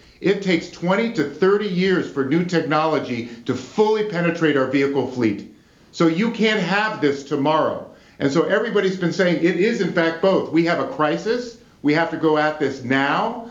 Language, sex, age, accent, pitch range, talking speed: English, male, 50-69, American, 145-185 Hz, 185 wpm